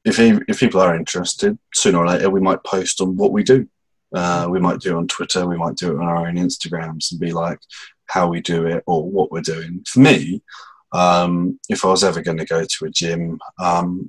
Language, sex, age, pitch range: English, male, 20-39, 85-95 Hz